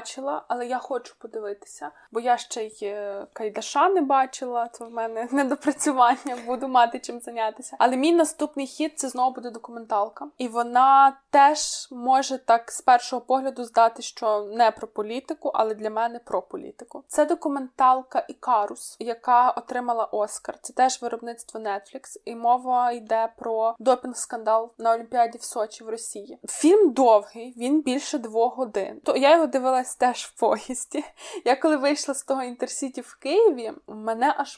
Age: 20-39